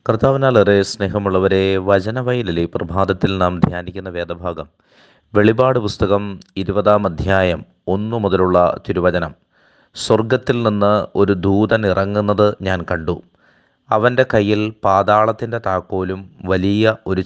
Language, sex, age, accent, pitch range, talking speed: Malayalam, male, 30-49, native, 95-110 Hz, 95 wpm